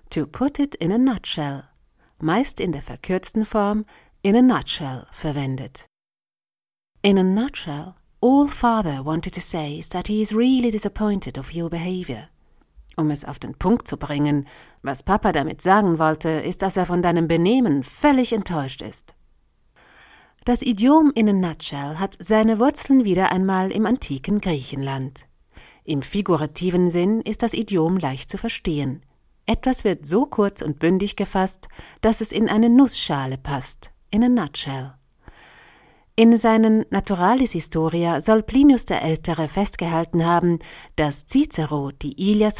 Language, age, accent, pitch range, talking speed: German, 40-59, German, 150-220 Hz, 150 wpm